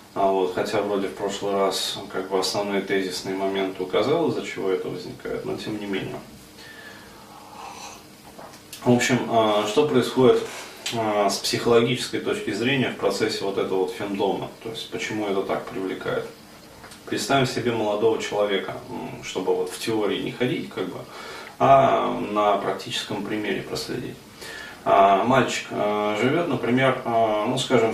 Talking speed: 130 wpm